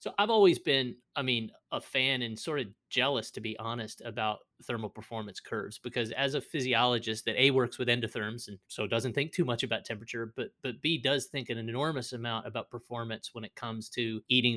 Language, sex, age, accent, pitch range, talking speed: English, male, 30-49, American, 110-140 Hz, 210 wpm